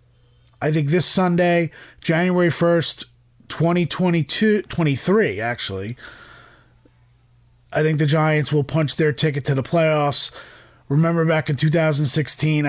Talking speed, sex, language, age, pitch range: 115 wpm, male, English, 30-49, 125-160 Hz